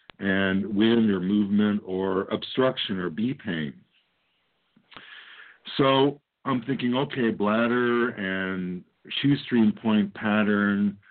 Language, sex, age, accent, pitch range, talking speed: English, male, 50-69, American, 100-125 Hz, 95 wpm